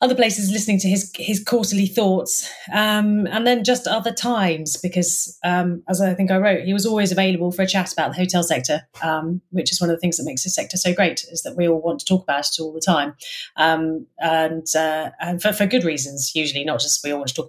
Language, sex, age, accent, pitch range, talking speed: English, female, 30-49, British, 160-210 Hz, 250 wpm